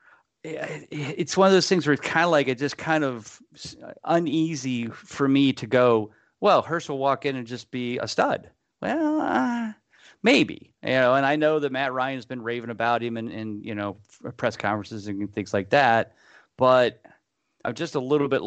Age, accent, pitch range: 40-59, American, 110-130 Hz